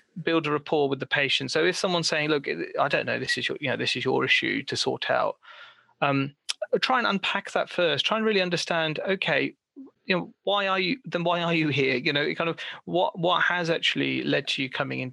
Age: 30-49